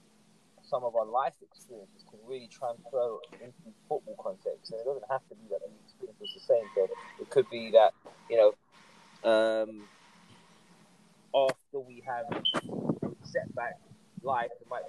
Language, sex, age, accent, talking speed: English, male, 20-39, British, 160 wpm